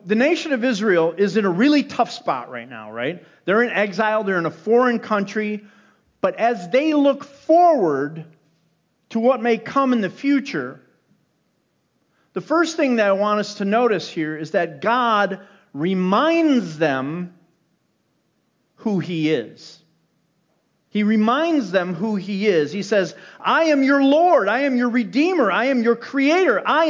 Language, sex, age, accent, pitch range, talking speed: English, male, 40-59, American, 185-250 Hz, 160 wpm